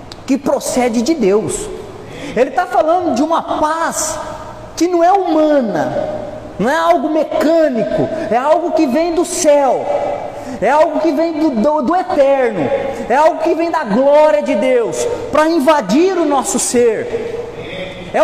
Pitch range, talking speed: 260-345 Hz, 150 wpm